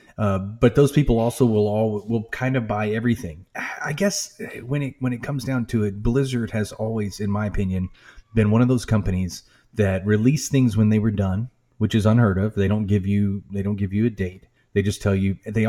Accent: American